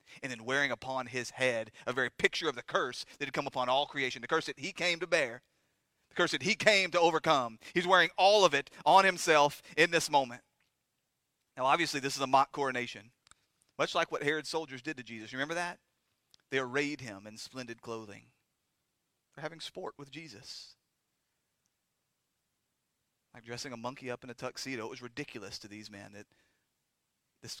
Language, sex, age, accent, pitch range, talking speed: English, male, 30-49, American, 120-150 Hz, 190 wpm